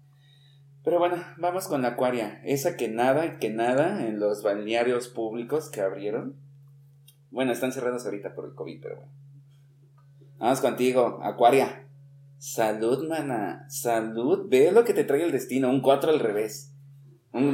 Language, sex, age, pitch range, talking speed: Spanish, male, 30-49, 115-140 Hz, 150 wpm